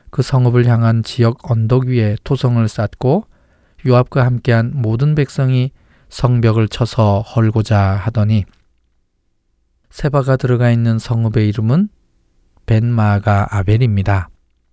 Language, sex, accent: Korean, male, native